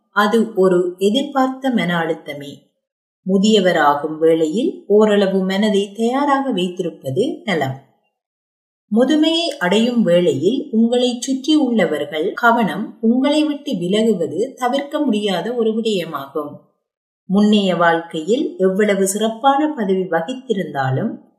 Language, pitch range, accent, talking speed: Tamil, 180-255 Hz, native, 90 wpm